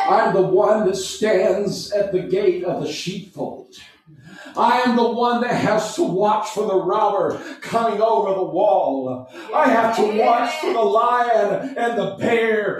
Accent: American